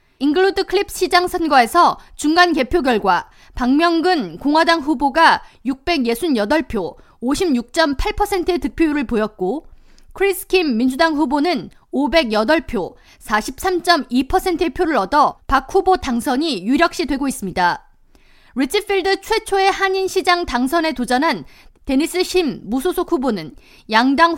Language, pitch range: Korean, 270-365 Hz